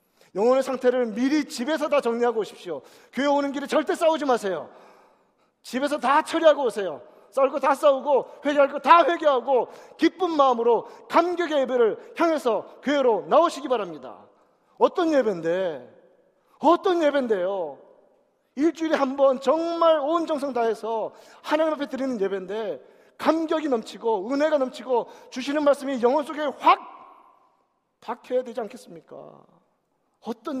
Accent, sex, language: native, male, Korean